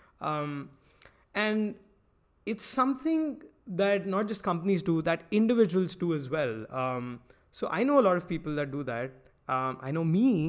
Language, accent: English, Indian